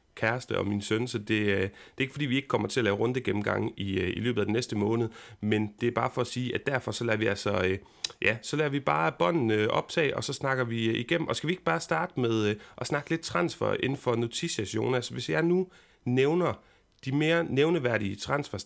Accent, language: native, Danish